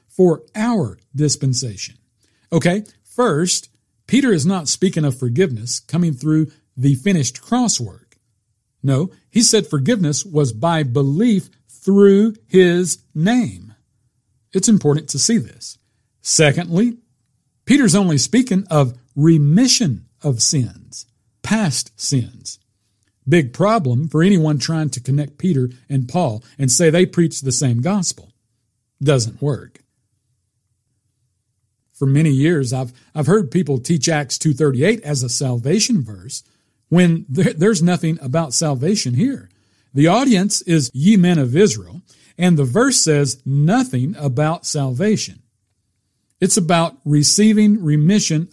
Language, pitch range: English, 125-180 Hz